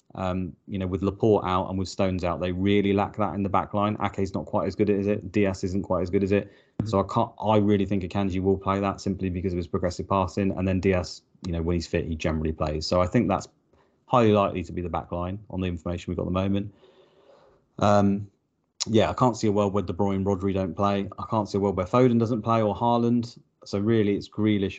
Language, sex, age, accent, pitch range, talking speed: English, male, 30-49, British, 95-105 Hz, 260 wpm